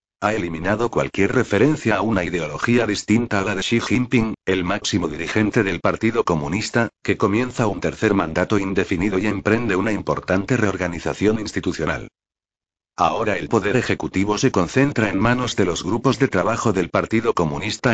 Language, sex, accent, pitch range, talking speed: Spanish, male, Spanish, 95-115 Hz, 155 wpm